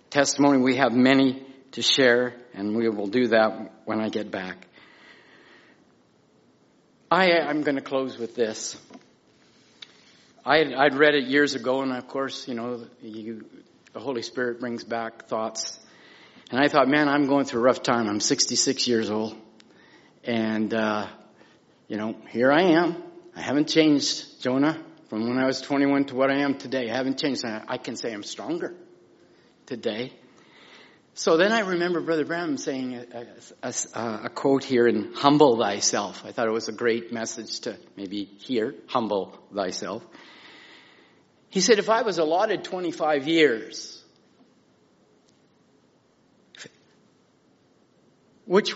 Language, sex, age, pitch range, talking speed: English, male, 50-69, 115-155 Hz, 150 wpm